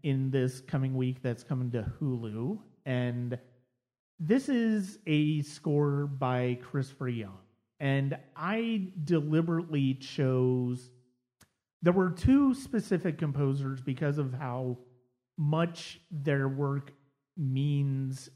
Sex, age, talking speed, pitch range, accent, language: male, 30-49, 105 wpm, 125-145 Hz, American, English